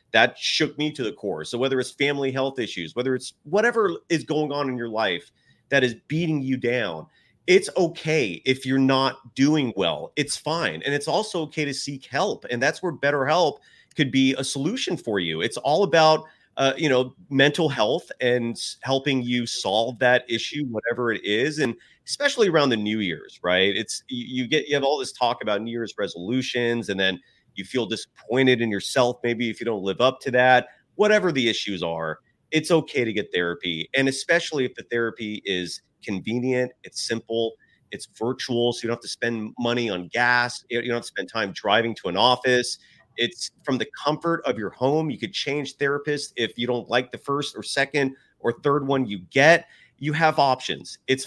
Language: English